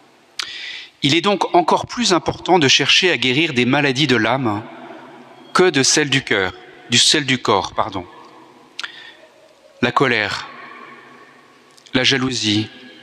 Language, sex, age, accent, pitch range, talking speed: French, male, 40-59, French, 125-170 Hz, 130 wpm